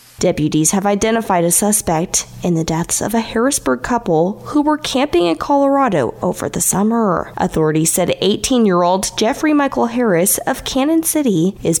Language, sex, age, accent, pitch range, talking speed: English, female, 20-39, American, 180-265 Hz, 155 wpm